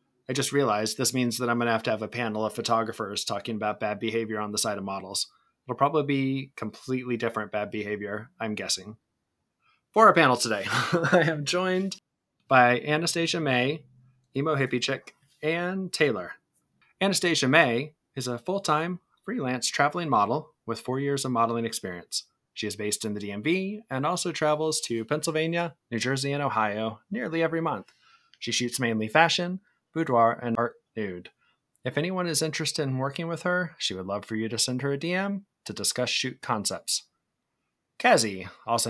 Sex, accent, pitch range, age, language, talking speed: male, American, 115-160 Hz, 20-39, English, 175 wpm